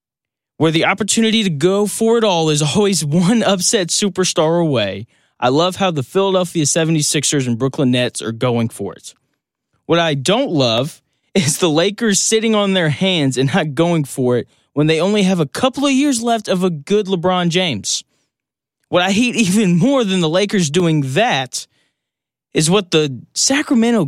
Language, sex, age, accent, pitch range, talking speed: English, male, 20-39, American, 135-195 Hz, 175 wpm